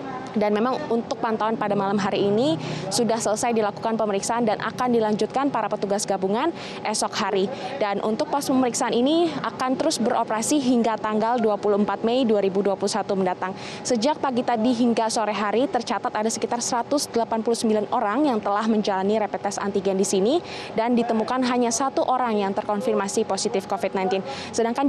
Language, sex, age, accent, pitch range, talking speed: Indonesian, female, 20-39, native, 205-245 Hz, 150 wpm